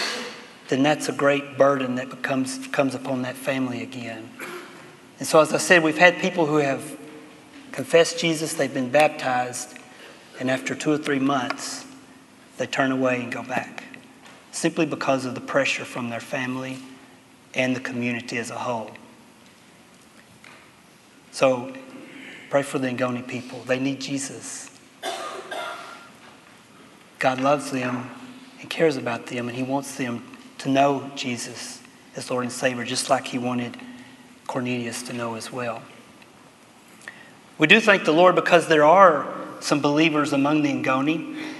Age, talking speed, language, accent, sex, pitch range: 30-49, 145 wpm, English, American, male, 130-170 Hz